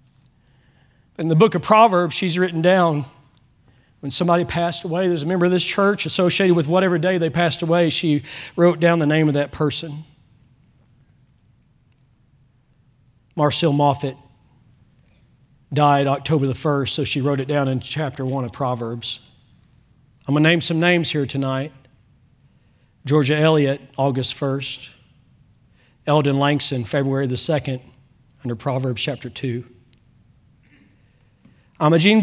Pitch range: 125-150 Hz